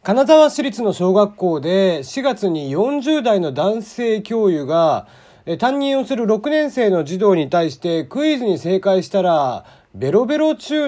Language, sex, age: Japanese, male, 40-59